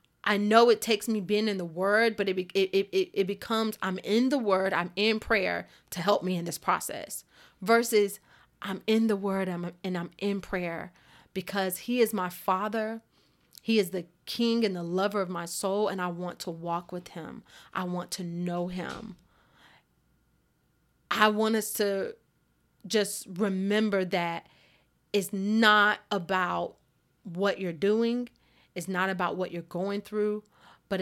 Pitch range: 185-215 Hz